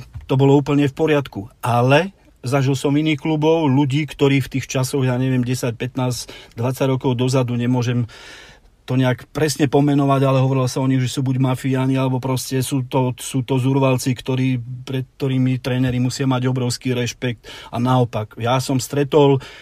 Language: Slovak